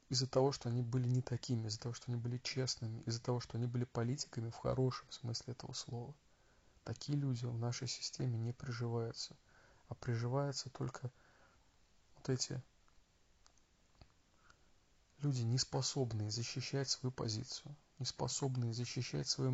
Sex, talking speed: male, 140 wpm